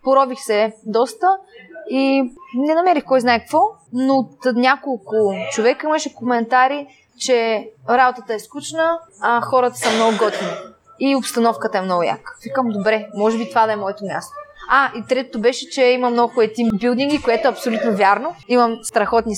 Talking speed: 165 wpm